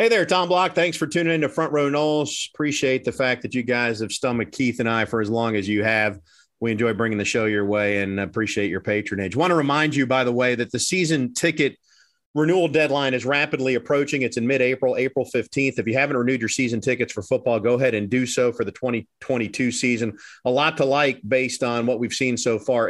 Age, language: 40-59, English